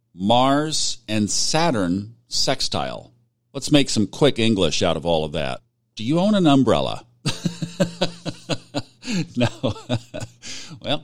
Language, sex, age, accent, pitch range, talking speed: English, male, 50-69, American, 95-125 Hz, 115 wpm